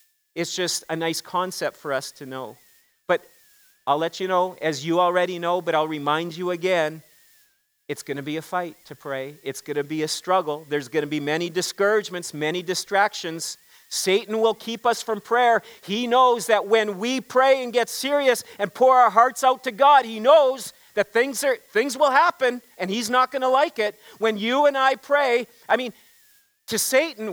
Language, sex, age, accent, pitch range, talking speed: English, male, 40-59, American, 175-260 Hz, 200 wpm